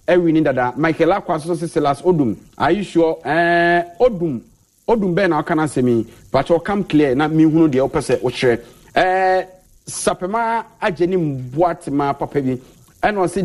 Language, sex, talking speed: English, male, 160 wpm